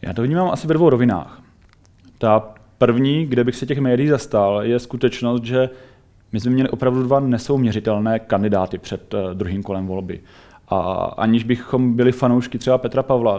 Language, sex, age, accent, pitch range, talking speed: Czech, male, 30-49, native, 105-120 Hz, 165 wpm